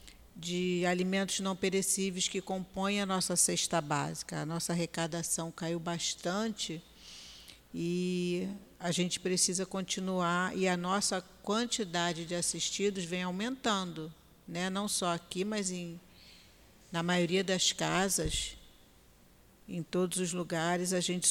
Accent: Brazilian